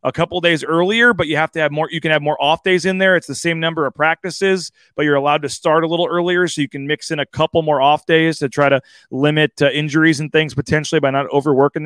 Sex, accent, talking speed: male, American, 275 wpm